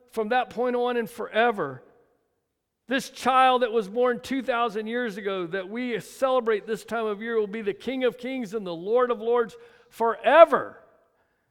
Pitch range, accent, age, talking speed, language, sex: 150-235 Hz, American, 50-69, 170 wpm, English, male